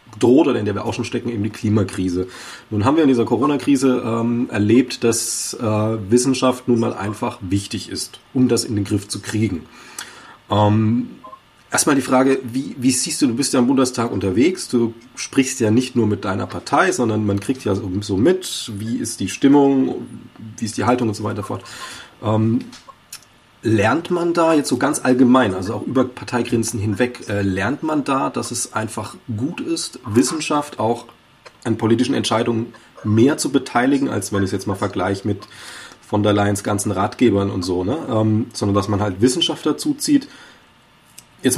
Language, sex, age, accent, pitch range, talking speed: German, male, 30-49, German, 105-125 Hz, 185 wpm